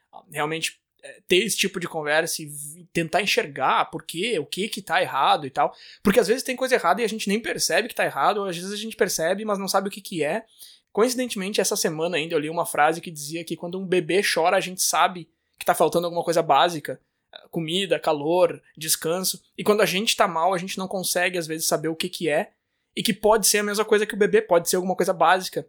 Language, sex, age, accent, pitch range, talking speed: Portuguese, male, 20-39, Brazilian, 165-205 Hz, 245 wpm